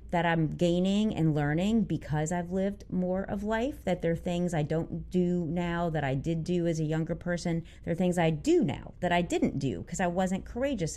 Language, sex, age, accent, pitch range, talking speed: English, female, 30-49, American, 155-195 Hz, 225 wpm